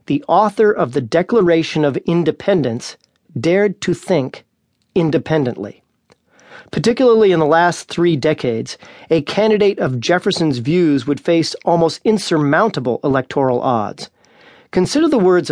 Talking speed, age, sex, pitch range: 120 wpm, 40-59, male, 140-180 Hz